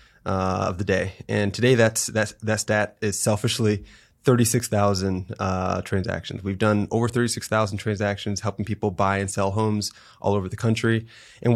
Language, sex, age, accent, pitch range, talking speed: English, male, 20-39, American, 100-120 Hz, 160 wpm